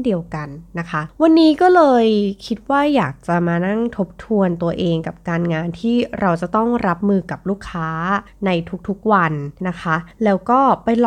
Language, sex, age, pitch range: Thai, female, 20-39, 165-220 Hz